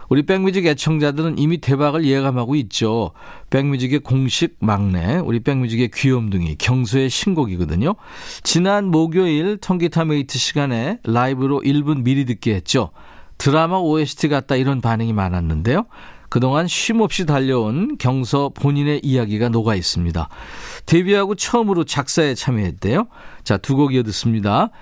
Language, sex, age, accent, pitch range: Korean, male, 40-59, native, 110-155 Hz